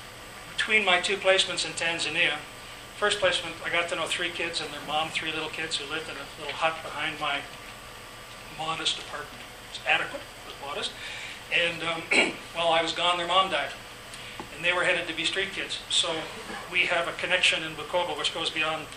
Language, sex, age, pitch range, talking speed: English, male, 40-59, 145-180 Hz, 200 wpm